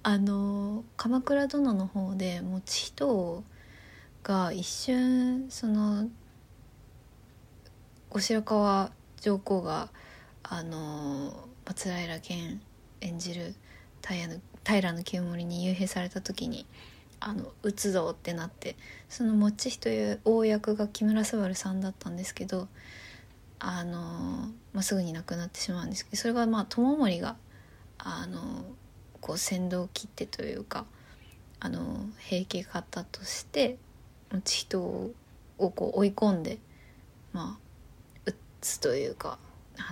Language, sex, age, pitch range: Japanese, female, 20-39, 170-215 Hz